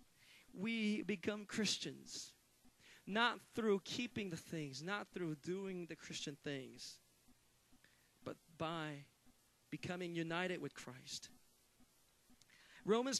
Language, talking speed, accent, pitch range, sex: Italian, 95 wpm, American, 175-250 Hz, male